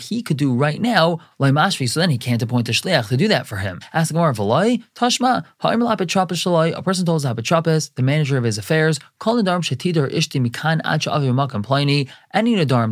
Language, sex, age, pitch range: English, male, 20-39, 125-170 Hz